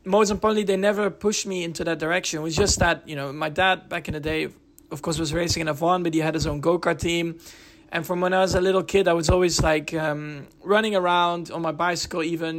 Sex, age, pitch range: male, 20-39, 150-180 Hz